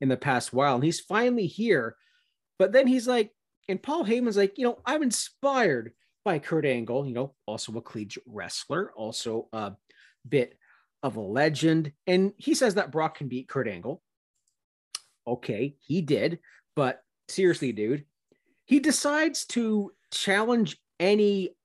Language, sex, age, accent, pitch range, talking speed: English, male, 40-59, American, 130-190 Hz, 150 wpm